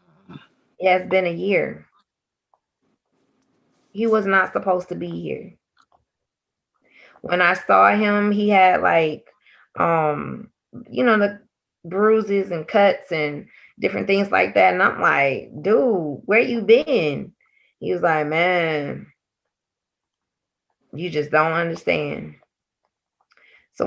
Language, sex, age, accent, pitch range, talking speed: English, female, 20-39, American, 180-225 Hz, 120 wpm